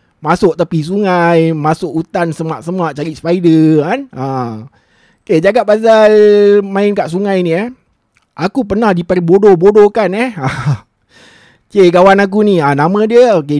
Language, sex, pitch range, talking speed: Malay, male, 145-215 Hz, 140 wpm